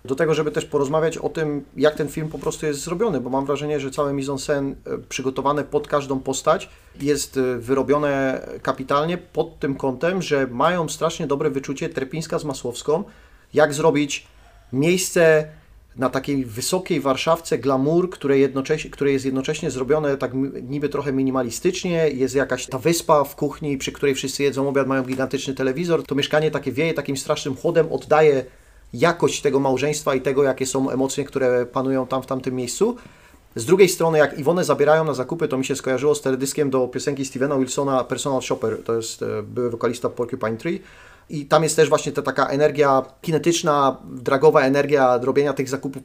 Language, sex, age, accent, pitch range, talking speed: Polish, male, 30-49, native, 135-155 Hz, 170 wpm